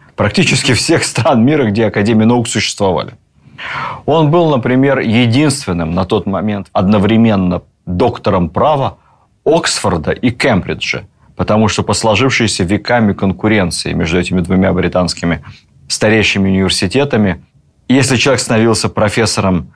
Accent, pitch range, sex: native, 90-120 Hz, male